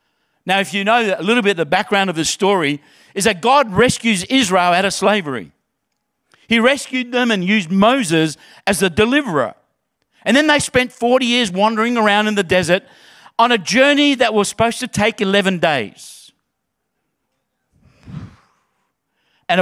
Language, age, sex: English, 50-69, male